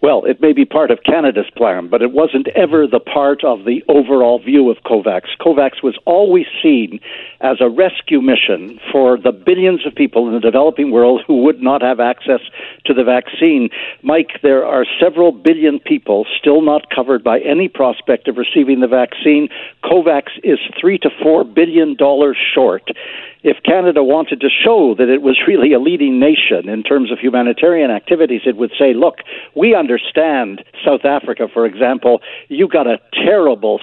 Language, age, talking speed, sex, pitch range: English, 60-79, 175 wpm, male, 130-175 Hz